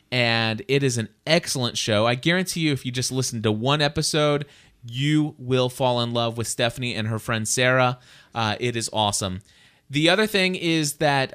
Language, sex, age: English, male, 30-49